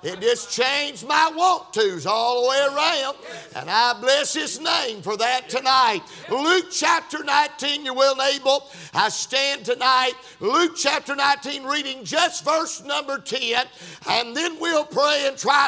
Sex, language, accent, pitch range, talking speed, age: male, English, American, 255-310 Hz, 155 wpm, 50-69